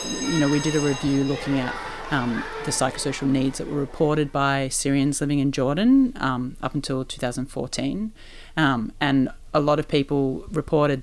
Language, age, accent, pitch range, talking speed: English, 30-49, Australian, 135-150 Hz, 170 wpm